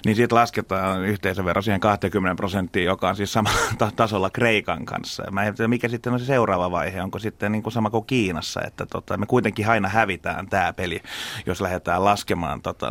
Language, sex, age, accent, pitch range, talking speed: Finnish, male, 30-49, native, 90-105 Hz, 200 wpm